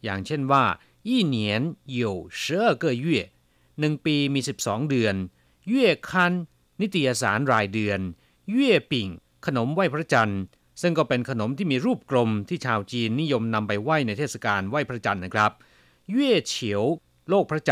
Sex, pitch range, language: male, 105-165 Hz, Chinese